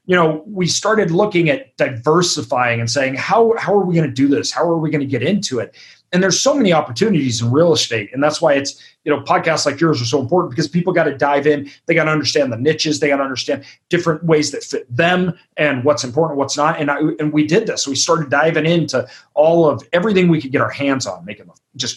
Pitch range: 130-160 Hz